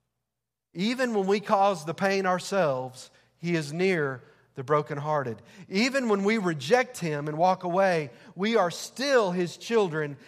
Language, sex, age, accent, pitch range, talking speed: English, male, 40-59, American, 155-200 Hz, 145 wpm